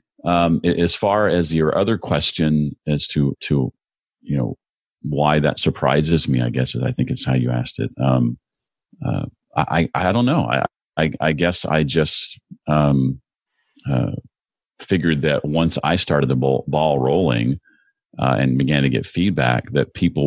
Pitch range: 65-80 Hz